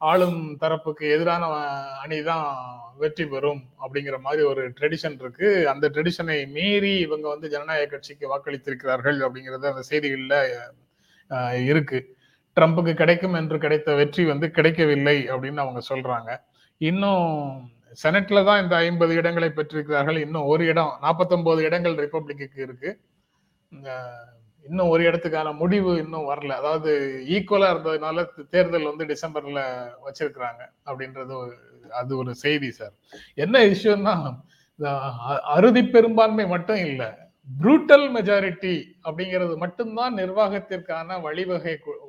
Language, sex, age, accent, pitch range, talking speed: Tamil, male, 30-49, native, 140-175 Hz, 110 wpm